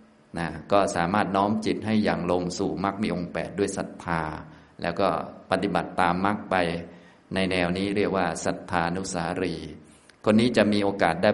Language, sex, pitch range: Thai, male, 90-105 Hz